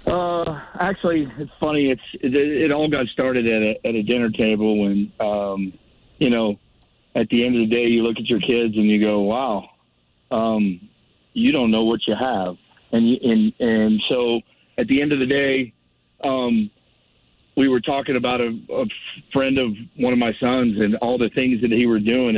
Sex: male